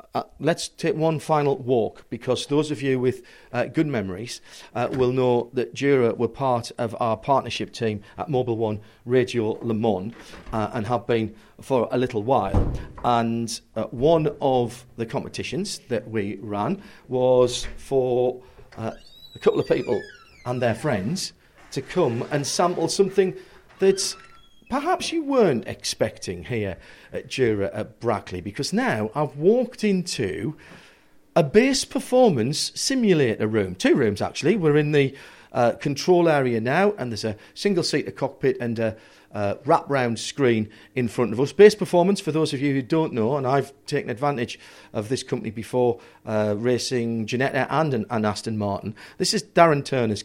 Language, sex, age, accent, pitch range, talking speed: English, male, 40-59, British, 115-160 Hz, 165 wpm